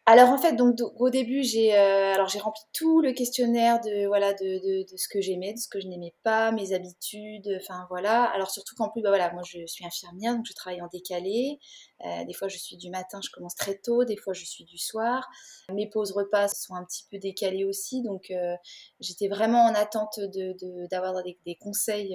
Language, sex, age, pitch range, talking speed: French, female, 20-39, 190-230 Hz, 230 wpm